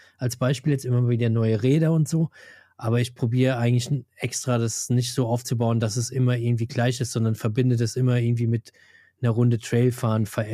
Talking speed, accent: 195 wpm, German